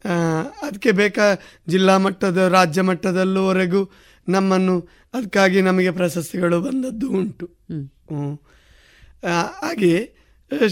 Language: Kannada